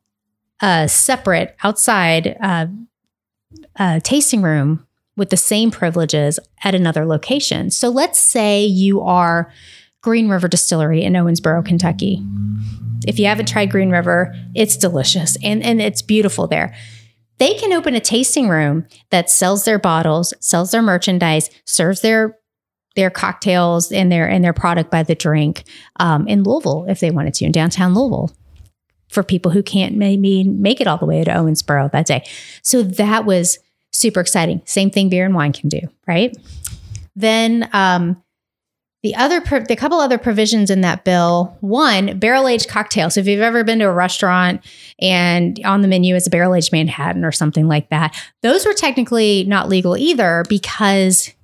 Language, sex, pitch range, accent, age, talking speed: English, female, 160-210 Hz, American, 30-49, 165 wpm